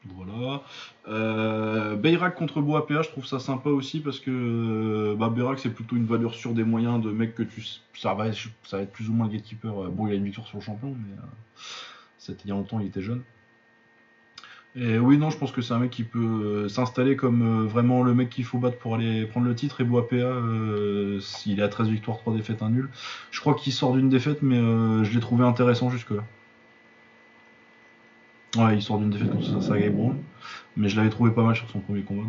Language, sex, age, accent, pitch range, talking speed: French, male, 20-39, French, 105-125 Hz, 225 wpm